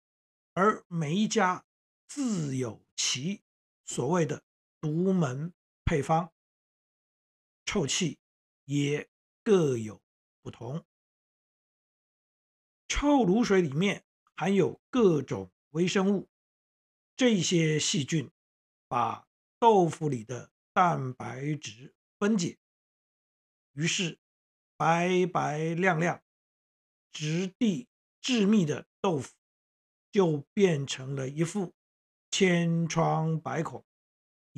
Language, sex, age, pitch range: Chinese, male, 50-69, 135-195 Hz